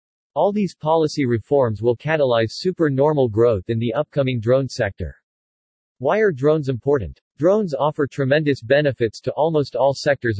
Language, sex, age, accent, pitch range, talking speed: English, male, 40-59, American, 115-150 Hz, 145 wpm